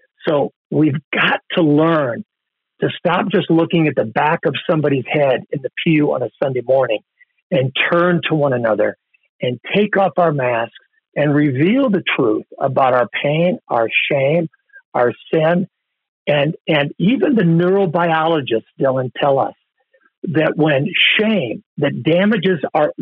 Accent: American